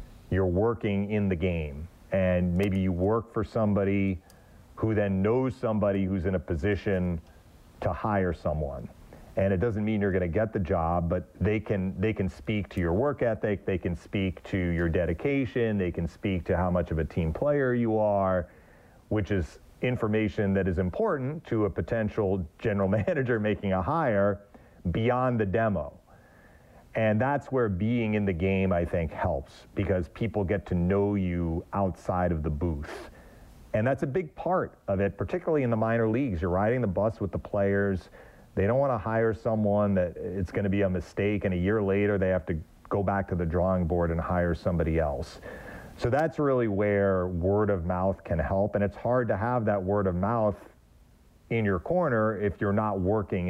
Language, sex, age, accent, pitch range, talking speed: English, male, 40-59, American, 90-110 Hz, 190 wpm